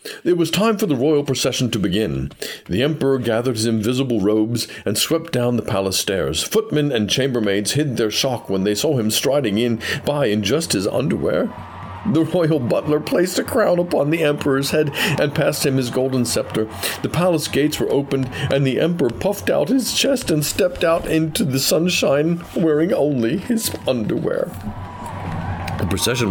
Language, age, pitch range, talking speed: English, 50-69, 105-145 Hz, 180 wpm